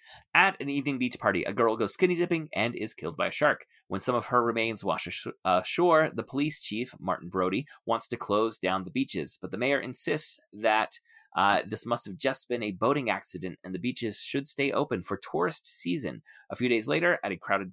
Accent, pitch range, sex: American, 95-135 Hz, male